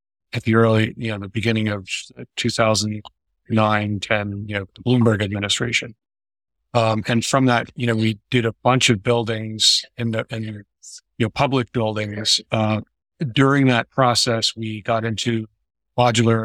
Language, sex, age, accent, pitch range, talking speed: English, male, 50-69, American, 105-120 Hz, 155 wpm